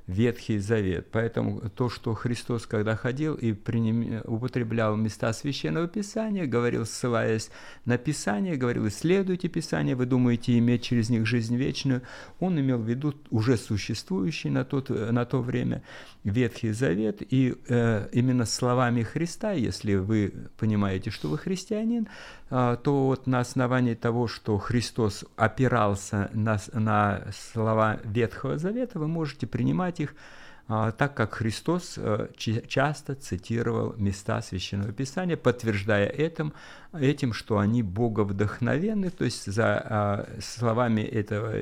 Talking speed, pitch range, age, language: 130 wpm, 110-135 Hz, 50-69, Ukrainian